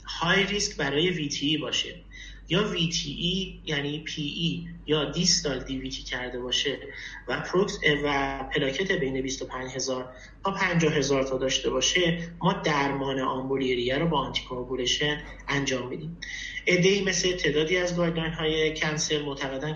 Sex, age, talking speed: male, 30-49, 135 wpm